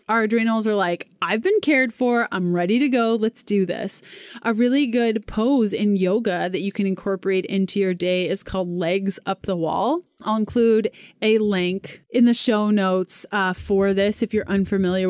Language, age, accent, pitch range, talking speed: English, 20-39, American, 195-245 Hz, 190 wpm